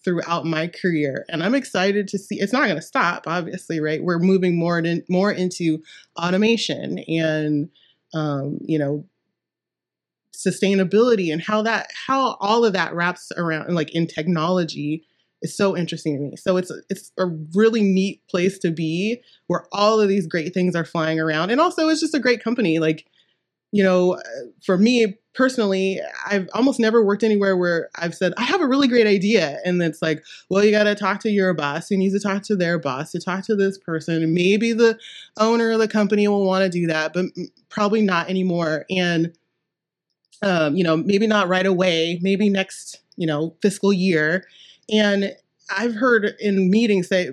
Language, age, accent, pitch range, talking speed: English, 20-39, American, 165-210 Hz, 190 wpm